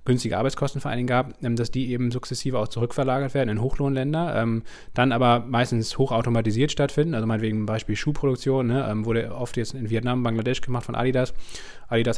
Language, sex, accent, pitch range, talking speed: German, male, German, 115-130 Hz, 175 wpm